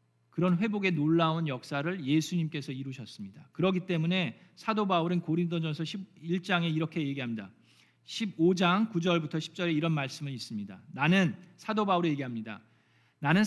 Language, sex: Korean, male